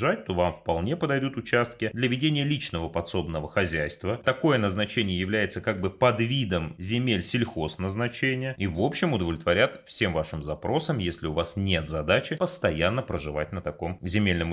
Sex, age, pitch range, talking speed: male, 30-49, 85-120 Hz, 155 wpm